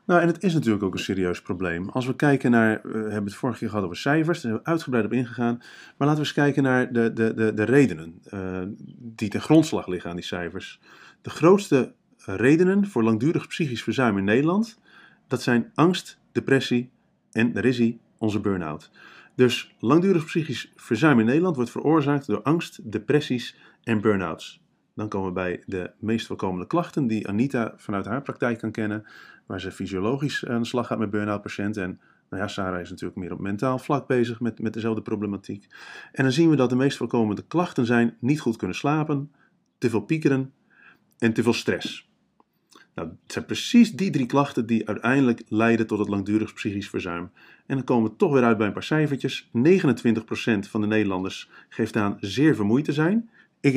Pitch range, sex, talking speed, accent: 105-140 Hz, male, 190 wpm, Dutch